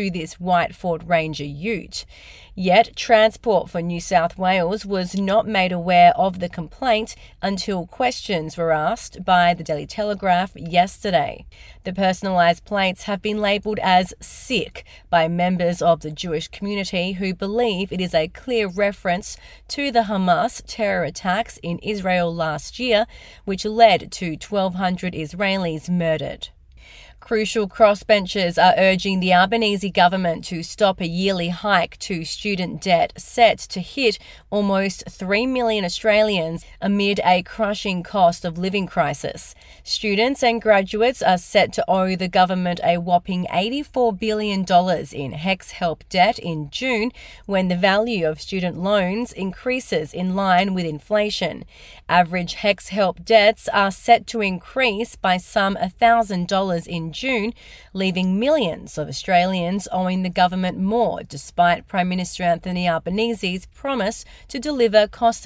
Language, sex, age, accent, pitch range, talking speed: English, female, 30-49, Australian, 175-215 Hz, 140 wpm